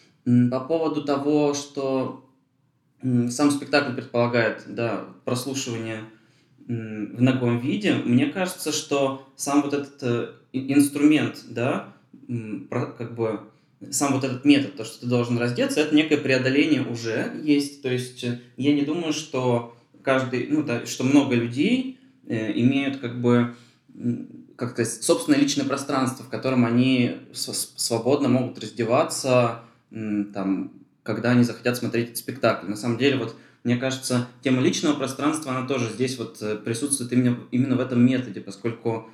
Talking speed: 135 wpm